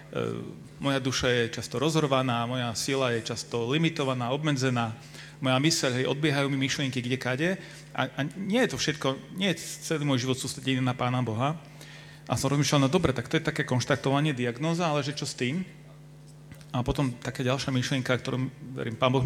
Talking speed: 185 wpm